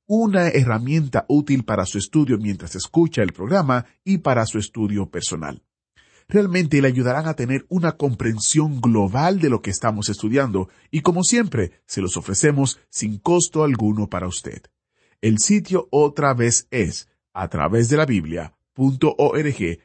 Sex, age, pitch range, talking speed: male, 40-59, 110-155 Hz, 140 wpm